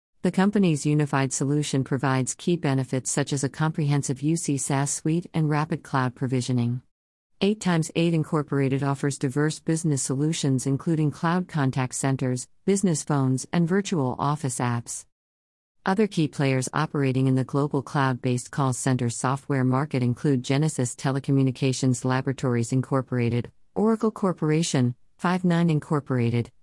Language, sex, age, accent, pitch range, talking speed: English, female, 50-69, American, 130-150 Hz, 125 wpm